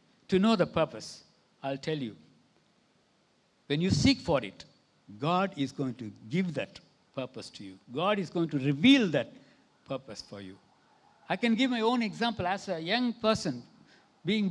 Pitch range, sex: 140-215 Hz, male